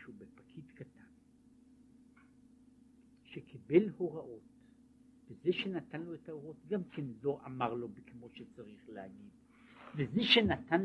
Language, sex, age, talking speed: Hebrew, male, 60-79, 105 wpm